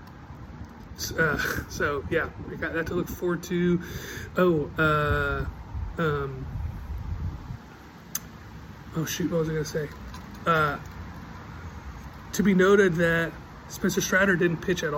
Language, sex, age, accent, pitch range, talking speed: English, male, 30-49, American, 100-165 Hz, 120 wpm